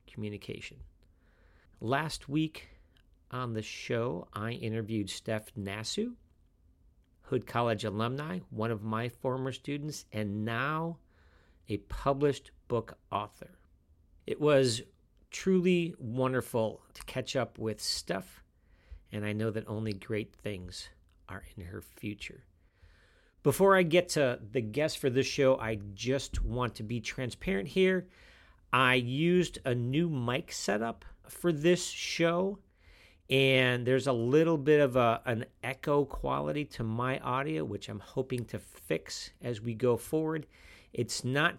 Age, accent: 50-69, American